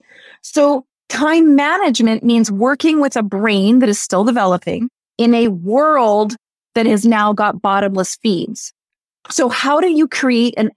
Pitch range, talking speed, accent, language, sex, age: 205-270 Hz, 150 wpm, American, English, female, 30-49